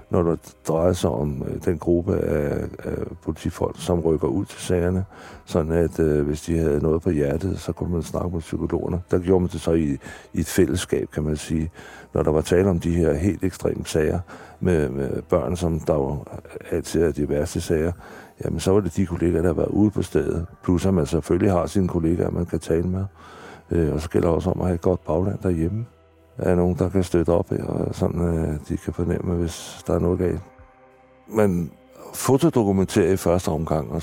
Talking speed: 210 wpm